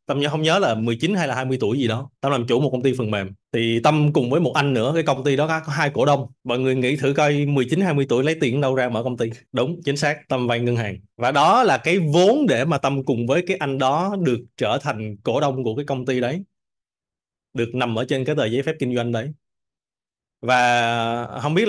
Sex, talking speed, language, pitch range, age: male, 255 wpm, Vietnamese, 120-155 Hz, 20-39